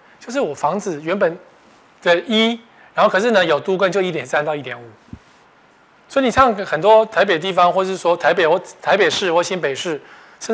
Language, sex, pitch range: Chinese, male, 150-220 Hz